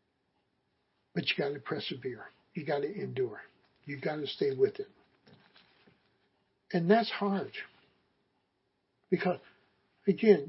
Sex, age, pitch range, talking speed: male, 60-79, 165-215 Hz, 115 wpm